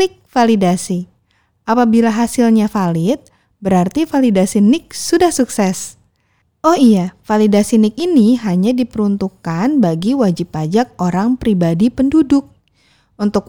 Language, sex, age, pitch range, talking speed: Indonesian, female, 30-49, 195-260 Hz, 100 wpm